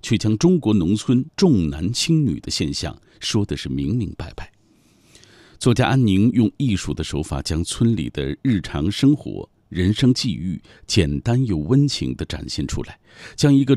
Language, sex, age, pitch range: Chinese, male, 50-69, 85-130 Hz